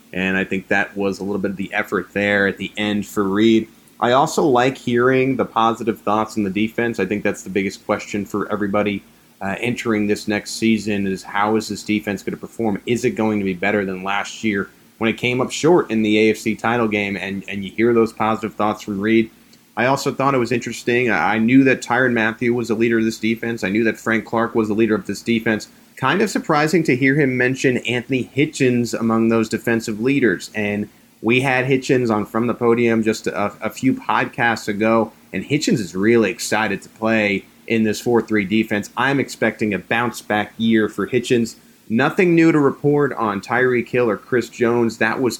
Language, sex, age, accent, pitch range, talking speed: English, male, 30-49, American, 105-120 Hz, 215 wpm